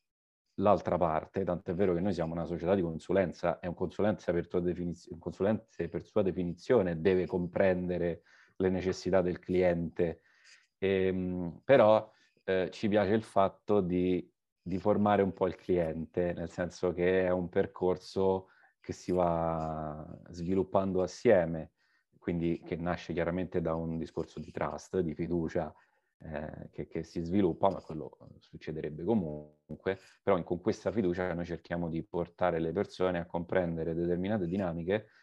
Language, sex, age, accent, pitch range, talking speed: Italian, male, 30-49, native, 85-95 Hz, 140 wpm